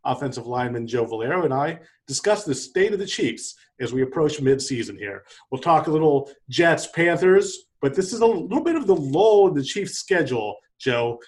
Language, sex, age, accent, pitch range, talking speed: English, male, 40-59, American, 125-170 Hz, 195 wpm